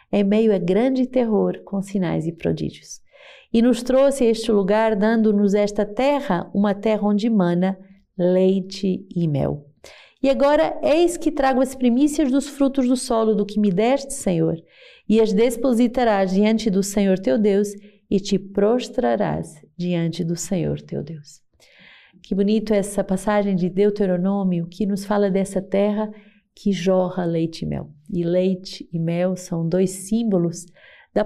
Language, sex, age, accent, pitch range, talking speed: Portuguese, female, 40-59, Brazilian, 175-215 Hz, 155 wpm